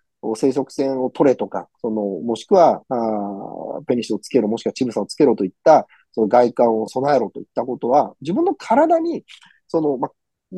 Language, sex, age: Japanese, male, 40-59